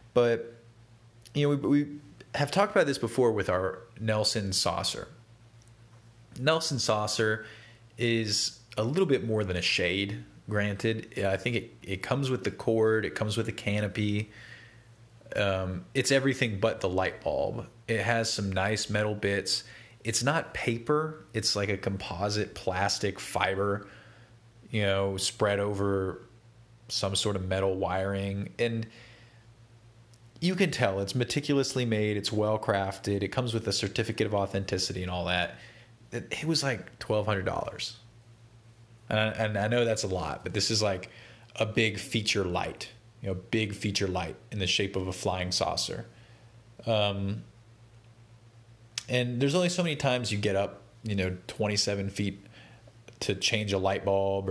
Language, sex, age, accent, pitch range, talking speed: English, male, 30-49, American, 100-115 Hz, 150 wpm